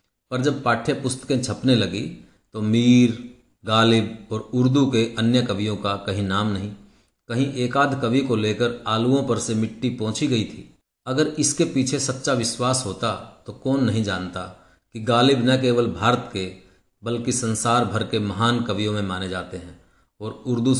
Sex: male